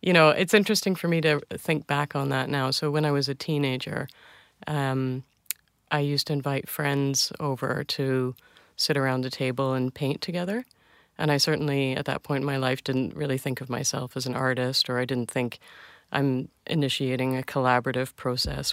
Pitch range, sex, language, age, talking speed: 130-155 Hz, female, Swedish, 30-49, 190 wpm